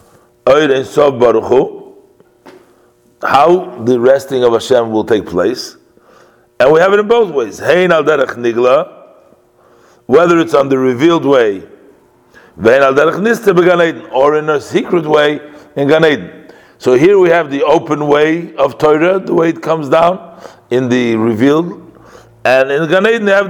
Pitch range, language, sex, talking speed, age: 120-180 Hz, English, male, 135 wpm, 50-69